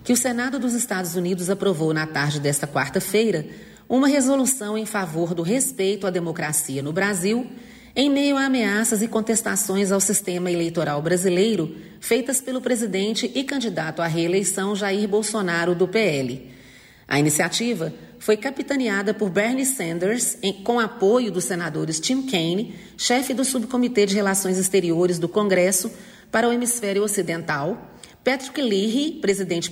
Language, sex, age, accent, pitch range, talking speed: Portuguese, female, 40-59, Brazilian, 170-240 Hz, 140 wpm